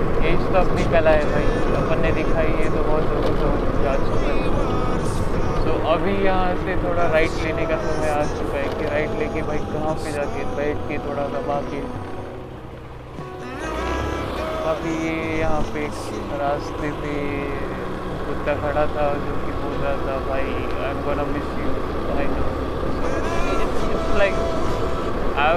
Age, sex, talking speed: 20-39, male, 40 wpm